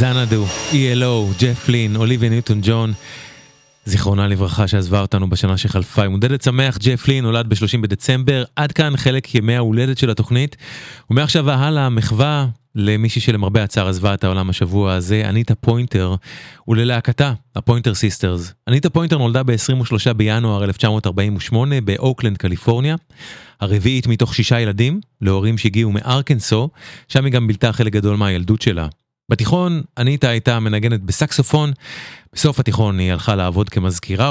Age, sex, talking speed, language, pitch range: 30-49, male, 120 wpm, English, 105-135 Hz